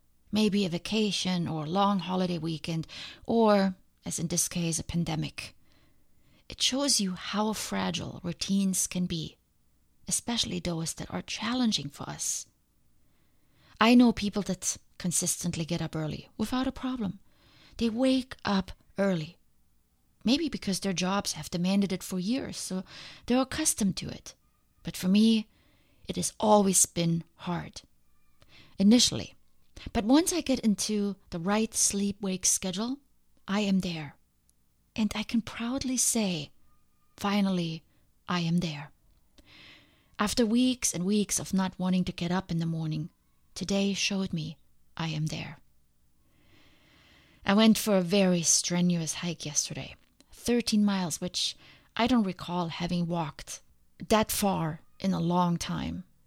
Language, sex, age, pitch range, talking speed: English, female, 30-49, 160-210 Hz, 140 wpm